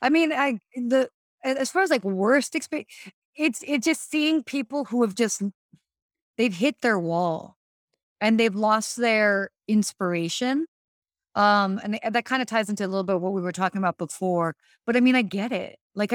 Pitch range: 195-260 Hz